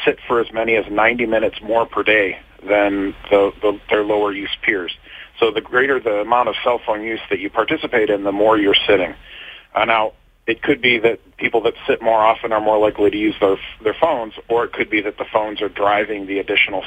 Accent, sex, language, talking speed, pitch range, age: American, male, English, 215 wpm, 100-120 Hz, 40-59